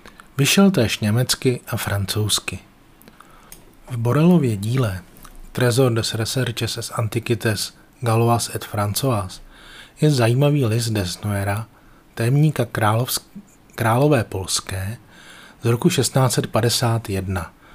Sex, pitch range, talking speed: male, 105-135 Hz, 90 wpm